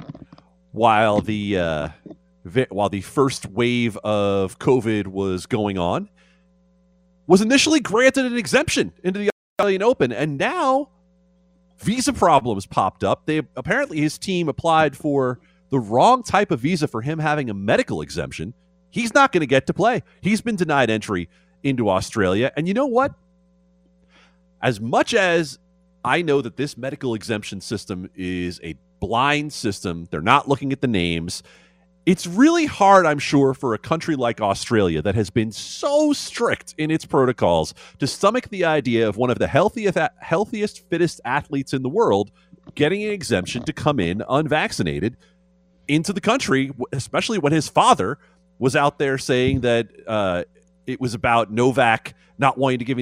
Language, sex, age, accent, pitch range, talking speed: English, male, 30-49, American, 110-180 Hz, 160 wpm